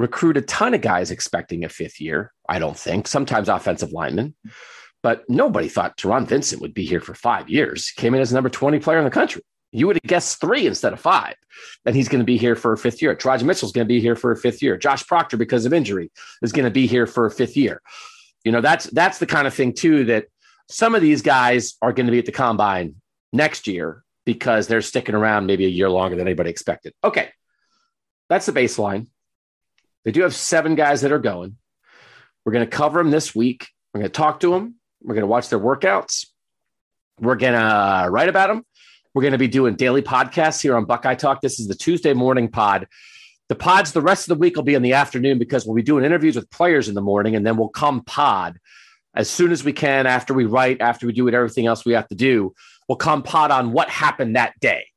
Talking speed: 240 wpm